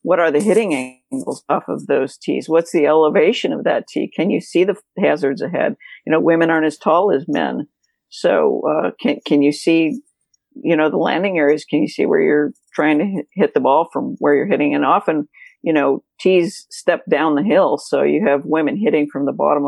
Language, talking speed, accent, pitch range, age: English, 215 wpm, American, 150-185 Hz, 50-69